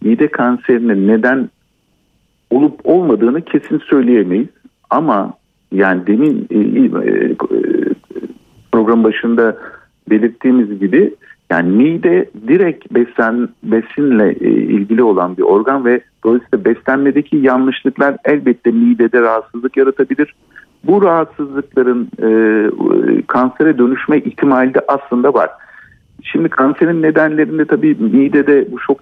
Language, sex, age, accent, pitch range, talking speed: Turkish, male, 50-69, native, 115-165 Hz, 95 wpm